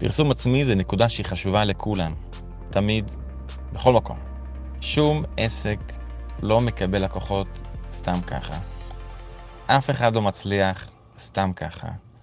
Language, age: Hebrew, 20-39